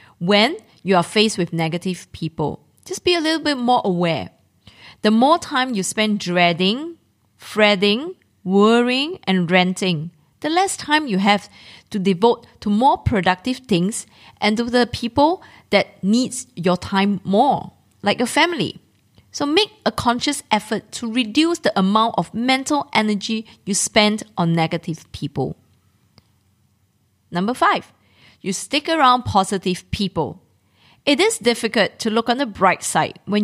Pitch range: 180-255 Hz